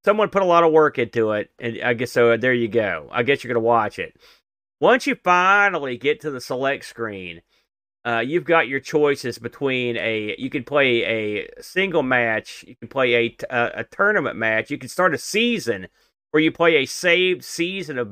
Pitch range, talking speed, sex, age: 125-170 Hz, 205 wpm, male, 40-59